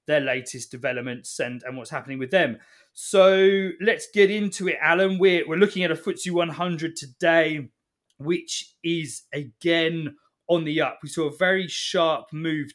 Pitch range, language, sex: 135-165 Hz, English, male